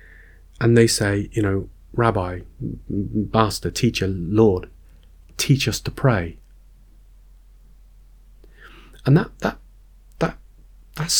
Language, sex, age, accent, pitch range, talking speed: English, male, 40-59, British, 100-130 Hz, 95 wpm